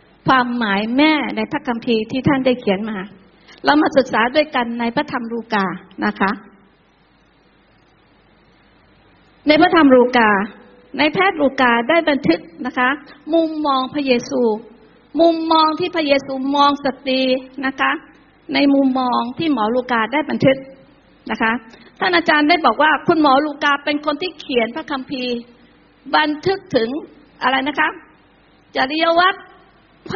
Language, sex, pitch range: Thai, female, 240-310 Hz